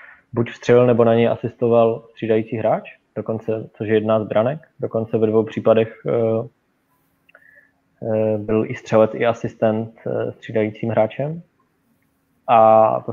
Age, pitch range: 20-39, 110-120 Hz